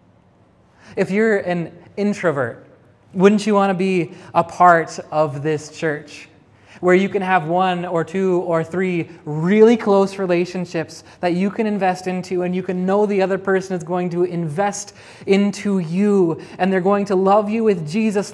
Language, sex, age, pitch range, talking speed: English, male, 20-39, 150-200 Hz, 170 wpm